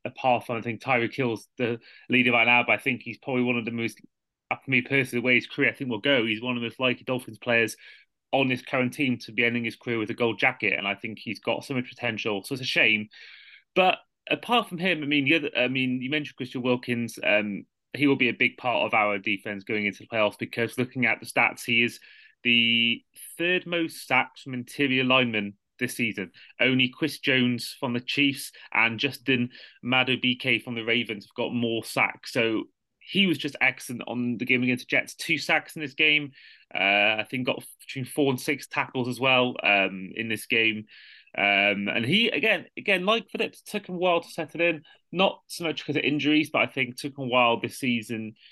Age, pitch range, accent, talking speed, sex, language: 30-49, 115-140 Hz, British, 230 wpm, male, English